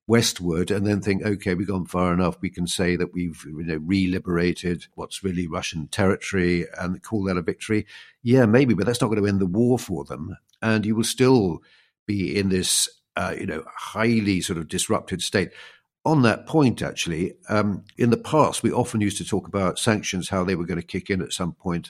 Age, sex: 50-69, male